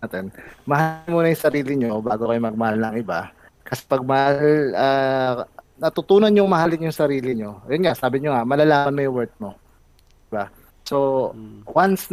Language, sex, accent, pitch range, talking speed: Filipino, male, native, 120-155 Hz, 175 wpm